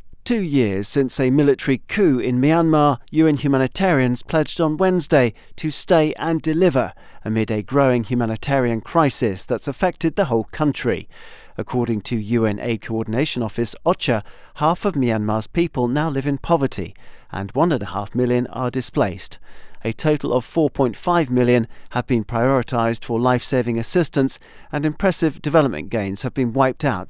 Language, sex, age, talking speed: English, male, 40-59, 155 wpm